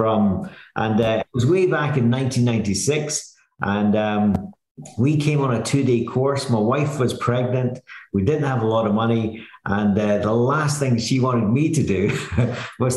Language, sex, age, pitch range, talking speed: English, male, 50-69, 115-140 Hz, 180 wpm